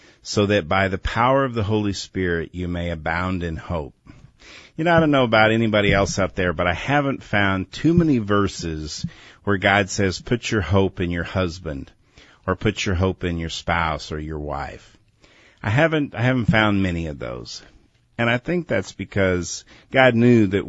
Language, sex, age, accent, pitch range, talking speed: English, male, 50-69, American, 90-110 Hz, 190 wpm